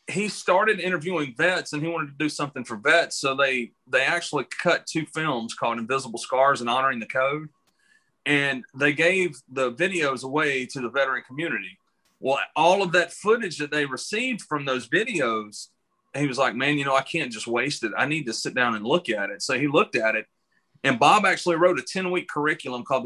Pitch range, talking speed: 130-170 Hz, 210 wpm